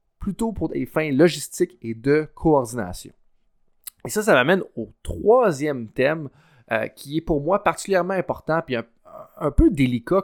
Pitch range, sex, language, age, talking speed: 125-190 Hz, male, French, 30-49, 160 wpm